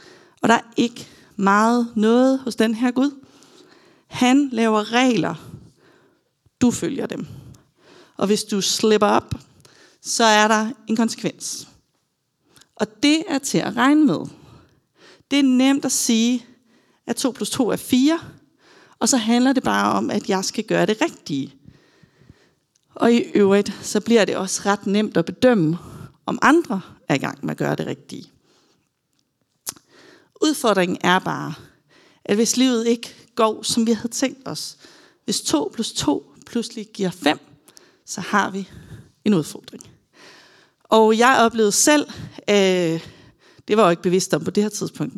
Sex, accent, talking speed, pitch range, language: female, native, 155 wpm, 195-255 Hz, Danish